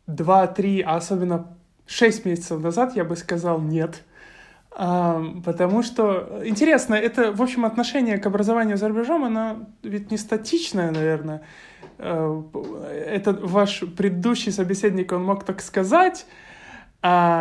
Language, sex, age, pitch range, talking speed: Russian, male, 20-39, 170-220 Hz, 115 wpm